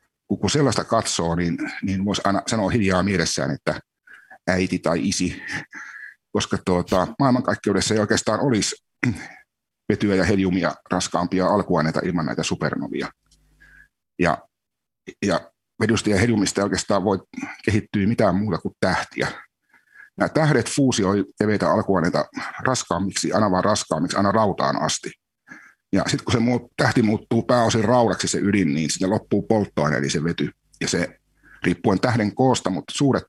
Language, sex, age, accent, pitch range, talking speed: Finnish, male, 60-79, native, 90-115 Hz, 140 wpm